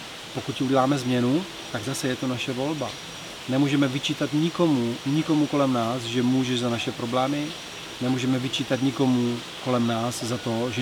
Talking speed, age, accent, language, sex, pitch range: 155 wpm, 30-49, native, Czech, male, 125-145 Hz